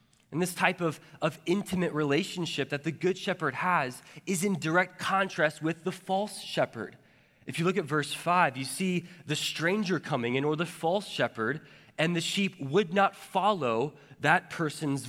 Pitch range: 130-165 Hz